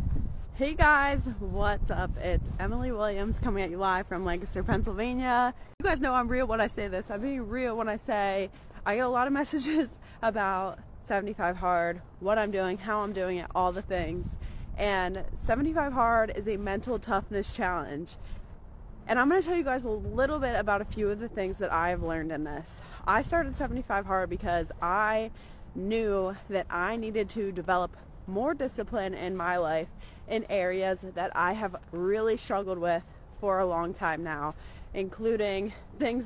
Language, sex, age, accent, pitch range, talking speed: English, female, 20-39, American, 190-235 Hz, 180 wpm